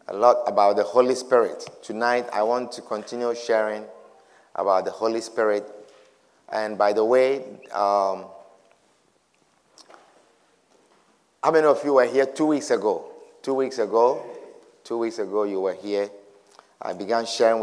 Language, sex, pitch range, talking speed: English, male, 110-150 Hz, 145 wpm